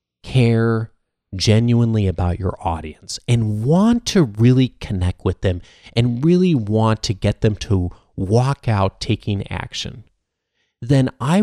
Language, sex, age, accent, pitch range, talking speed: English, male, 30-49, American, 90-115 Hz, 130 wpm